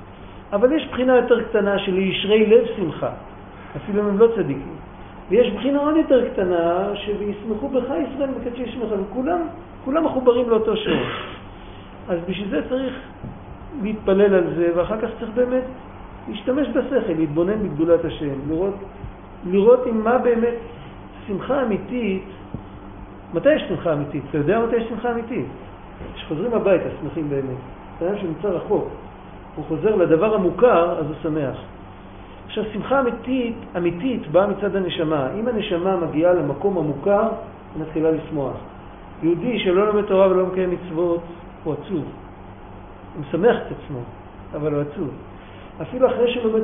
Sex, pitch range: male, 155-225 Hz